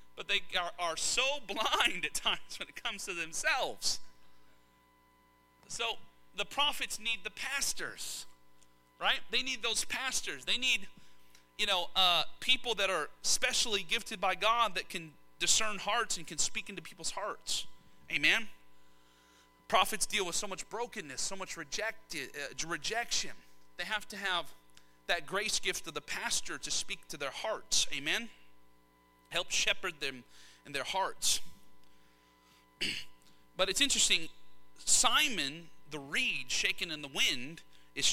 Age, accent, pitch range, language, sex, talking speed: 40-59, American, 155-220 Hz, English, male, 145 wpm